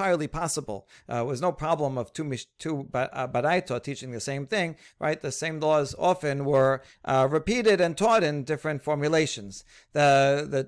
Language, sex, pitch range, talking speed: English, male, 135-170 Hz, 165 wpm